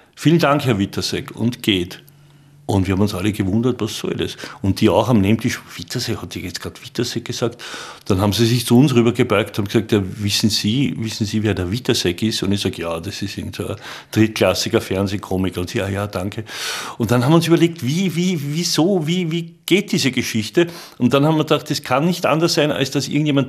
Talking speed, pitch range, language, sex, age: 220 wpm, 110-145 Hz, German, male, 50-69